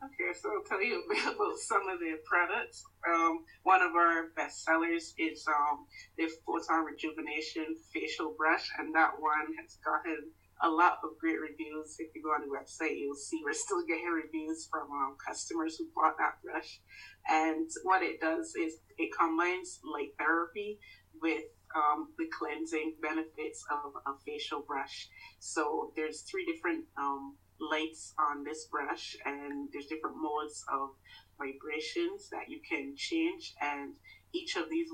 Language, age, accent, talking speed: English, 30-49, American, 165 wpm